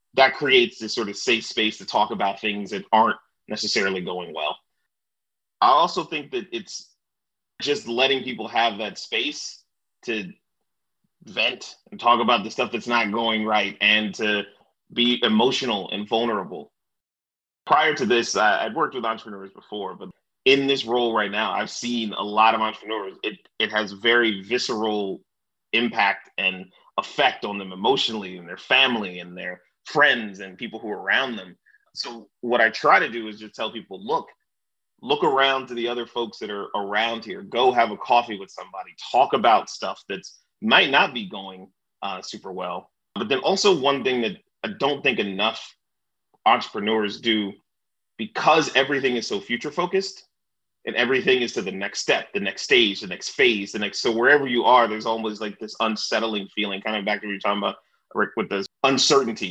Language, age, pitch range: English, 30-49, 105-125 Hz